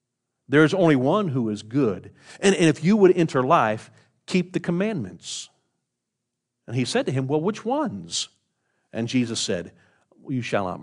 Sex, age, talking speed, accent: male, 50-69, 165 wpm, American